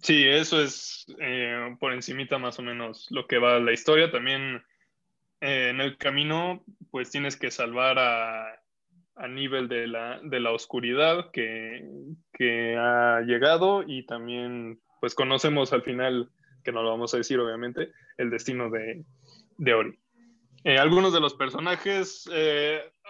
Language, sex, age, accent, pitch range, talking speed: Spanish, male, 20-39, Mexican, 120-155 Hz, 155 wpm